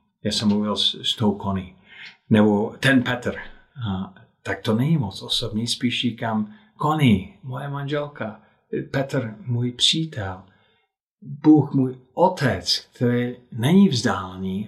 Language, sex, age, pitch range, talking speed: Czech, male, 50-69, 105-135 Hz, 125 wpm